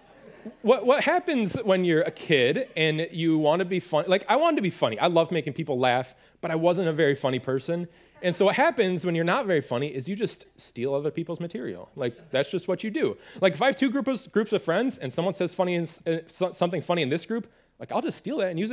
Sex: male